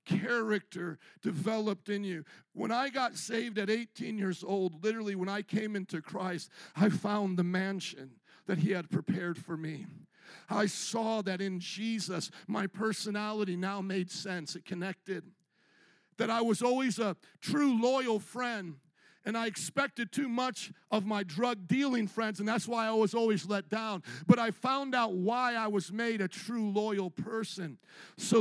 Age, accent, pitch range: 50-69, American, 180-230 Hz